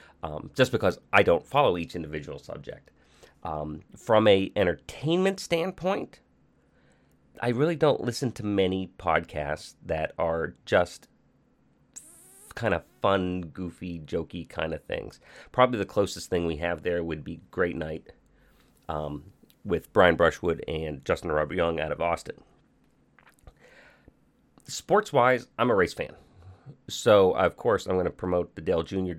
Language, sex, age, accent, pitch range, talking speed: English, male, 30-49, American, 80-100 Hz, 145 wpm